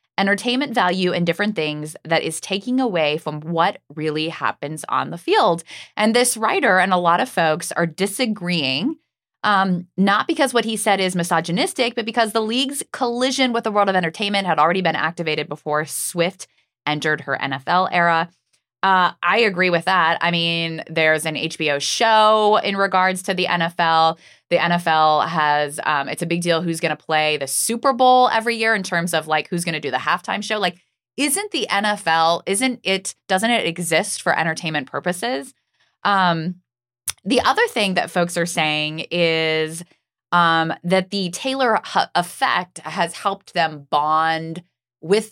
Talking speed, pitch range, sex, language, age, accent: 170 wpm, 160-210 Hz, female, English, 20-39, American